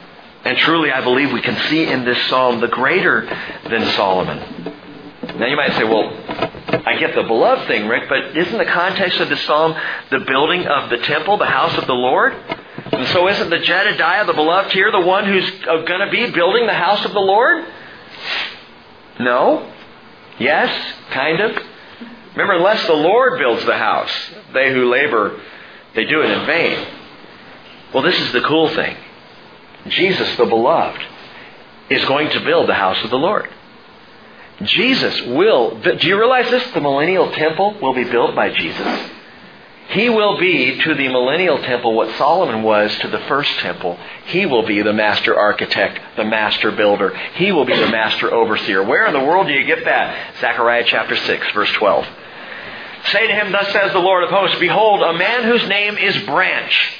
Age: 50-69